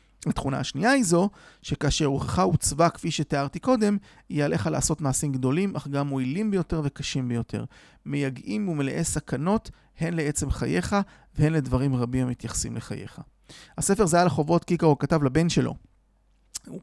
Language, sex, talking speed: Hebrew, male, 145 wpm